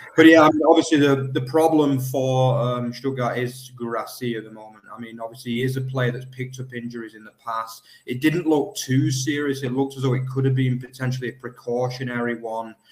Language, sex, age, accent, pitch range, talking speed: English, male, 20-39, British, 115-130 Hz, 210 wpm